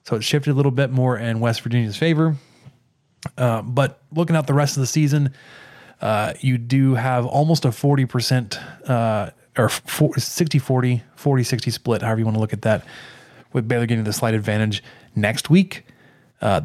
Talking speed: 175 wpm